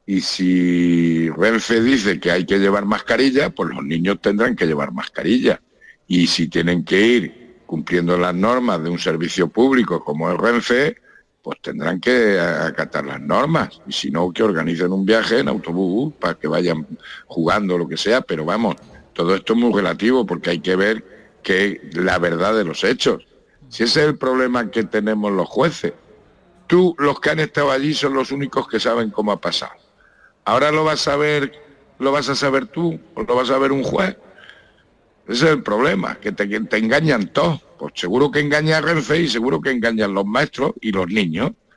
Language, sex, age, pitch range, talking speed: Spanish, male, 60-79, 90-135 Hz, 190 wpm